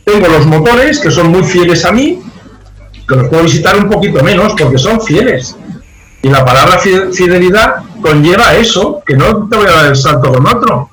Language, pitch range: Spanish, 135-200 Hz